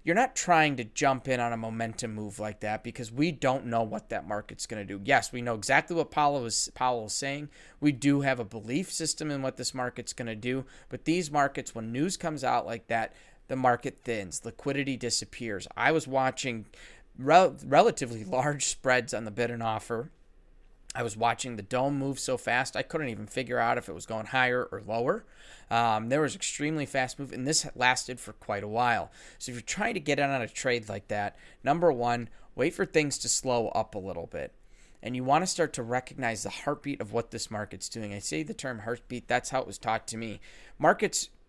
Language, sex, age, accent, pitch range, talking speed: English, male, 30-49, American, 110-135 Hz, 220 wpm